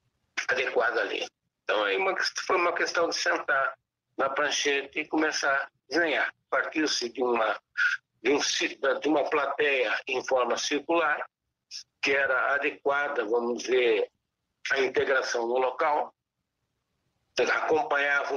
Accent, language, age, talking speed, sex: Brazilian, English, 60-79, 115 wpm, male